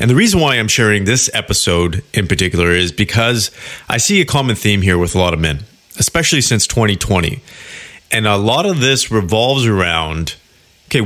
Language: English